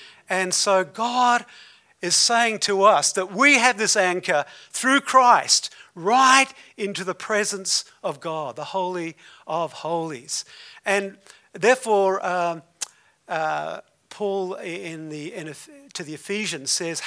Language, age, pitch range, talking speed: English, 50-69, 165-205 Hz, 115 wpm